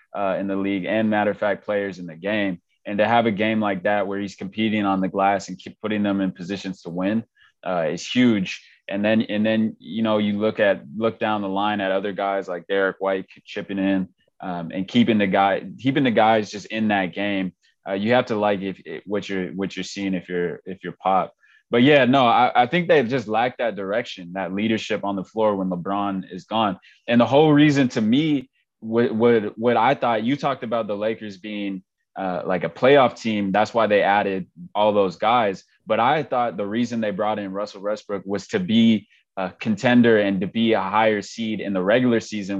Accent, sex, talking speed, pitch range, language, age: American, male, 225 wpm, 95-110 Hz, English, 20-39